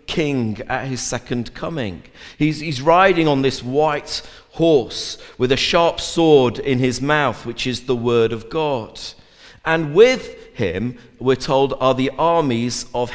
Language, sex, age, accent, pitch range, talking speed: English, male, 50-69, British, 120-150 Hz, 155 wpm